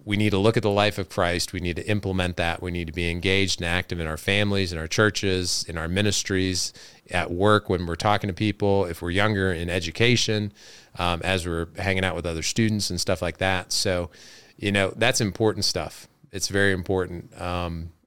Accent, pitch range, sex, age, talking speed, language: American, 85-100 Hz, male, 30-49, 215 wpm, English